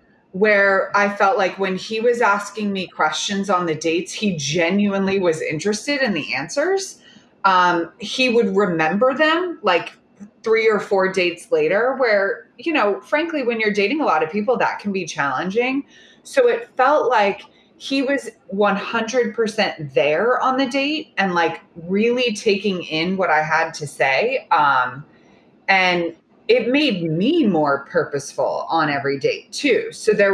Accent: American